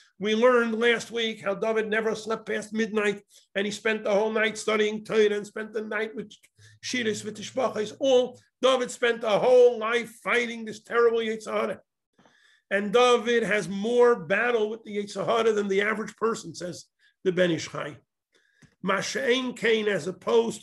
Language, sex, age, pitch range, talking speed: English, male, 50-69, 200-240 Hz, 165 wpm